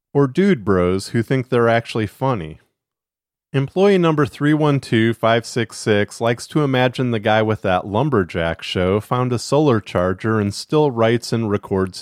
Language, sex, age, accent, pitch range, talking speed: English, male, 40-59, American, 95-135 Hz, 145 wpm